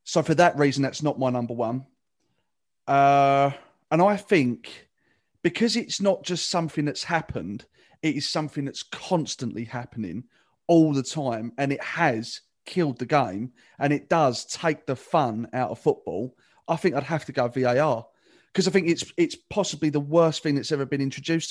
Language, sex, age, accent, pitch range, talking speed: English, male, 30-49, British, 135-175 Hz, 180 wpm